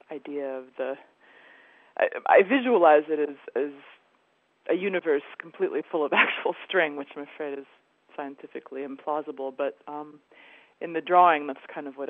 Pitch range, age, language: 140-160 Hz, 30-49, English